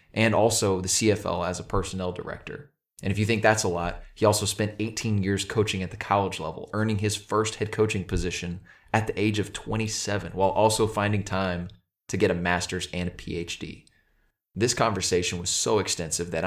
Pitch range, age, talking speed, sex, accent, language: 90-105 Hz, 20-39, 195 wpm, male, American, English